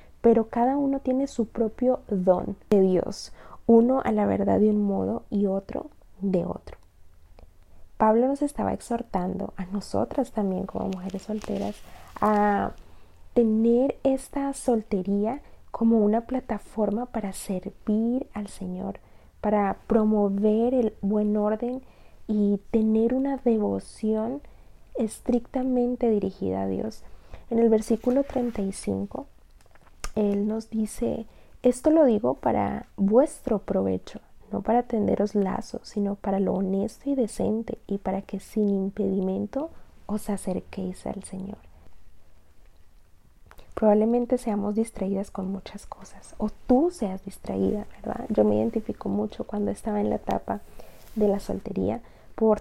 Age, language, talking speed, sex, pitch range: 30-49, Spanish, 125 wpm, female, 195-230 Hz